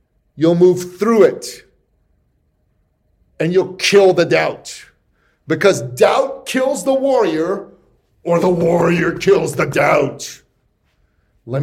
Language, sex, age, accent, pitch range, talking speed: English, male, 50-69, American, 145-215 Hz, 110 wpm